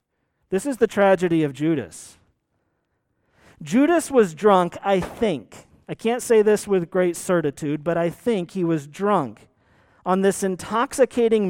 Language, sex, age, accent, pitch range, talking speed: English, male, 40-59, American, 160-215 Hz, 140 wpm